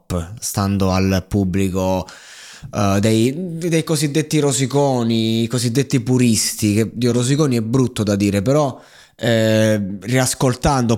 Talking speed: 110 wpm